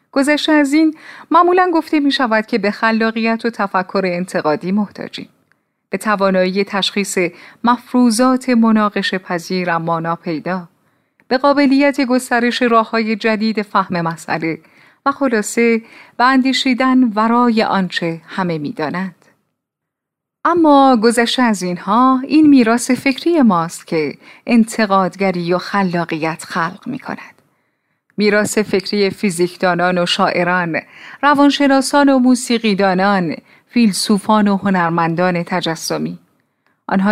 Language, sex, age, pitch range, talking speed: Persian, female, 30-49, 185-250 Hz, 105 wpm